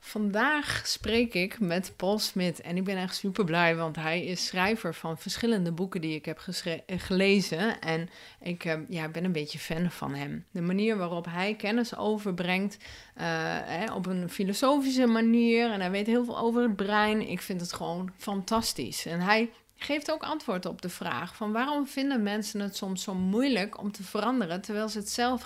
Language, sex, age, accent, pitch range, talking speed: Dutch, female, 30-49, Dutch, 175-225 Hz, 190 wpm